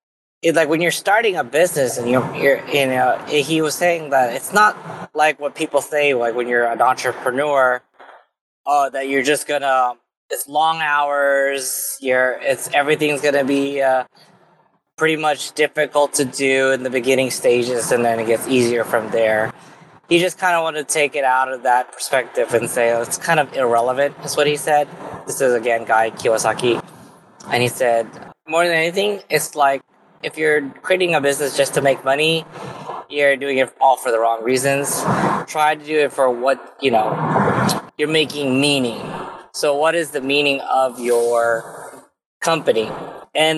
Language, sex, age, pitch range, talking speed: English, male, 20-39, 125-155 Hz, 180 wpm